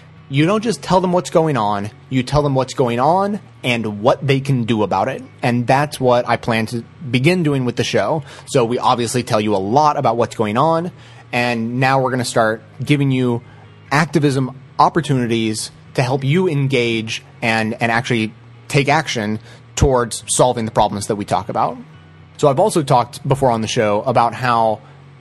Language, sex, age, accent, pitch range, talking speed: English, male, 30-49, American, 115-145 Hz, 190 wpm